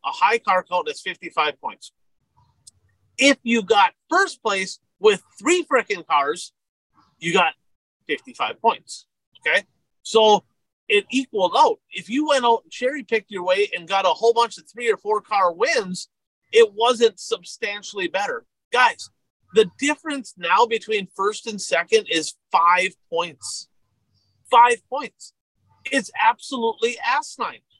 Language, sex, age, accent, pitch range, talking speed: English, male, 40-59, American, 195-280 Hz, 140 wpm